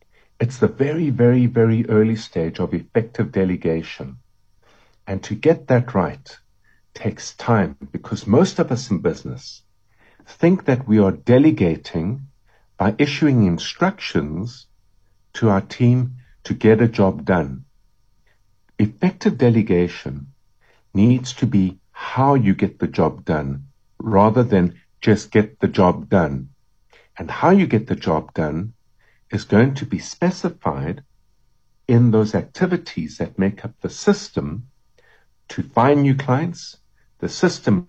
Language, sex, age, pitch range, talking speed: English, male, 60-79, 100-125 Hz, 130 wpm